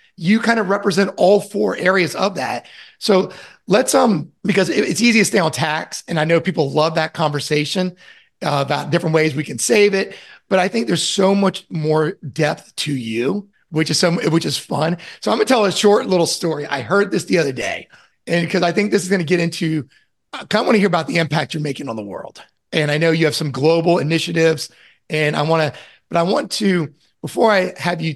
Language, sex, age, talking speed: English, male, 30-49, 225 wpm